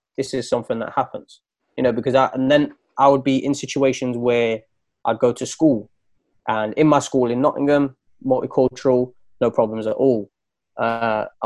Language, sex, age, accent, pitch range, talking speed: English, male, 20-39, British, 115-135 Hz, 175 wpm